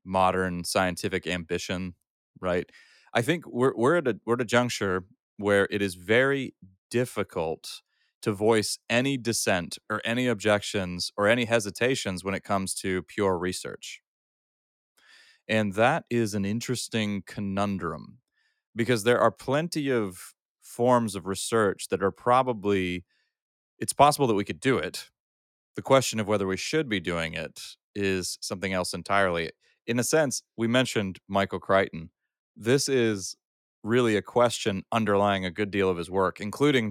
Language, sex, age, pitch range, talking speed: English, male, 30-49, 95-120 Hz, 150 wpm